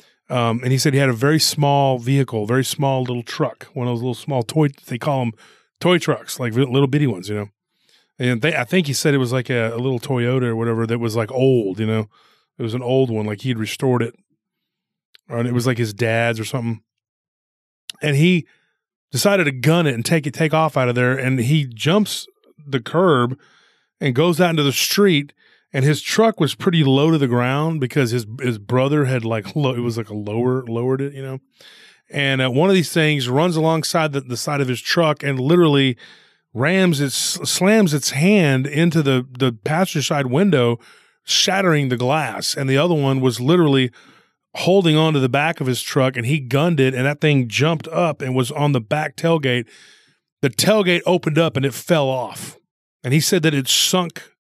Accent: American